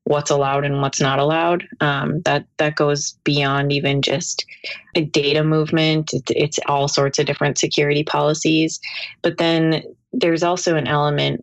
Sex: female